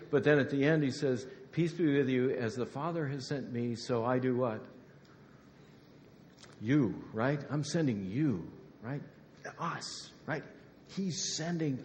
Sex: male